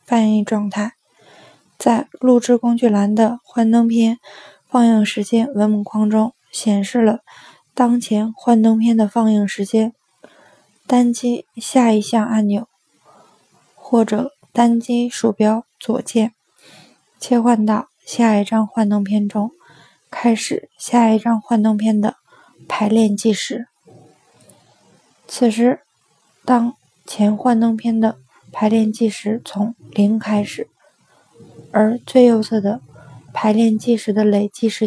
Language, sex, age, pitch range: Chinese, female, 20-39, 215-235 Hz